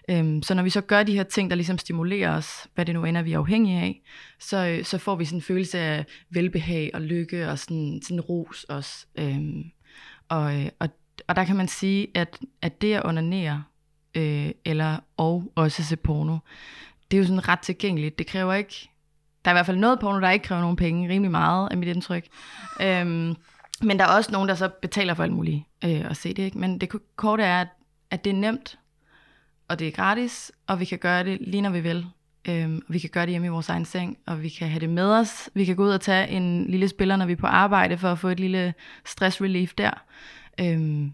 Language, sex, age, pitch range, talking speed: Danish, female, 20-39, 160-195 Hz, 235 wpm